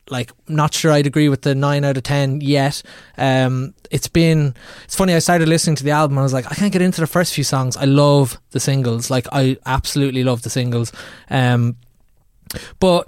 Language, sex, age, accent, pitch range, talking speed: English, male, 20-39, Irish, 130-160 Hz, 215 wpm